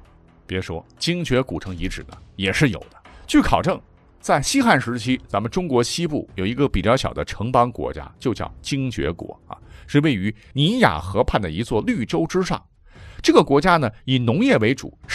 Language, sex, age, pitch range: Chinese, male, 50-69, 95-155 Hz